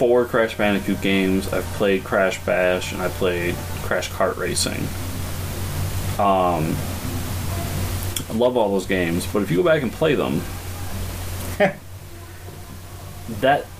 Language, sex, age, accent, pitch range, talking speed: English, male, 20-39, American, 90-110 Hz, 125 wpm